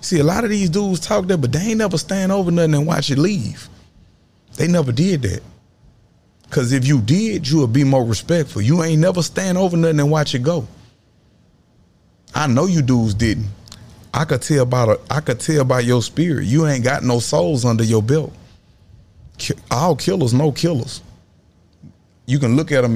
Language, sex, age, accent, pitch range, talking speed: English, male, 30-49, American, 115-155 Hz, 185 wpm